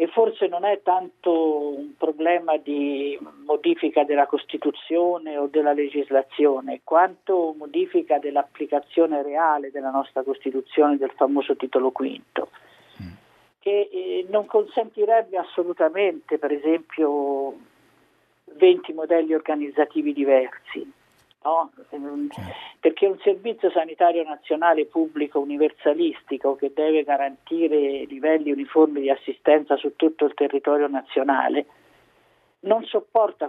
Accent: native